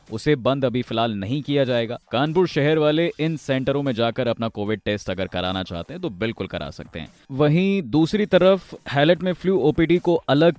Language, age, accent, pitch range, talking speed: Hindi, 20-39, native, 115-160 Hz, 200 wpm